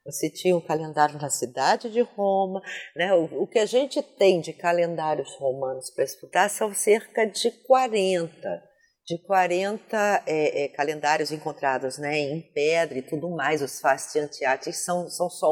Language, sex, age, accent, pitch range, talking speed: Portuguese, female, 50-69, Brazilian, 155-215 Hz, 160 wpm